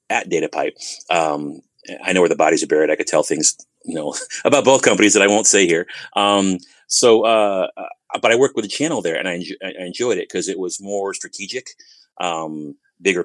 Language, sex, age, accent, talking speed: English, male, 30-49, American, 220 wpm